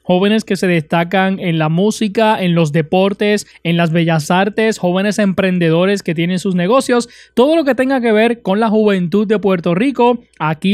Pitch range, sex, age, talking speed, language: 180-220 Hz, male, 20-39, 185 wpm, Spanish